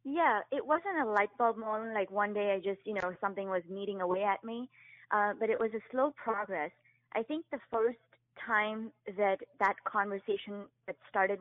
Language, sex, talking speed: English, female, 195 wpm